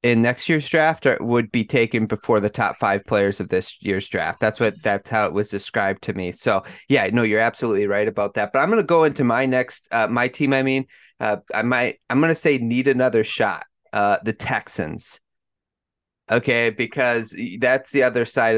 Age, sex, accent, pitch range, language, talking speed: 30-49, male, American, 105-130 Hz, English, 215 wpm